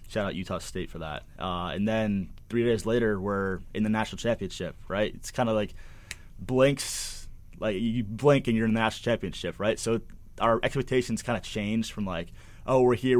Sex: male